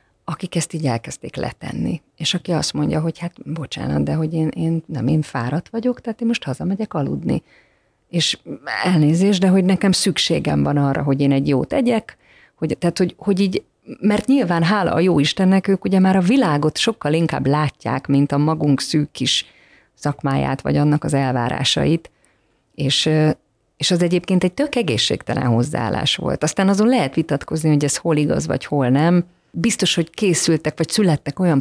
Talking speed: 175 wpm